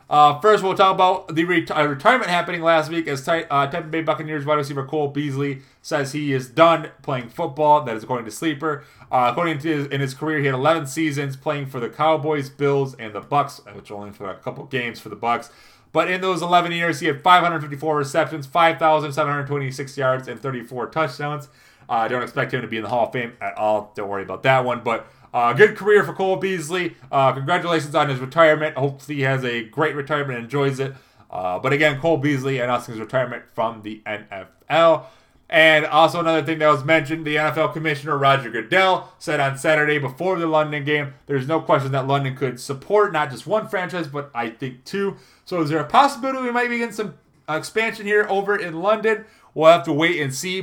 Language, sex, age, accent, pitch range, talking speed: English, male, 20-39, American, 135-170 Hz, 215 wpm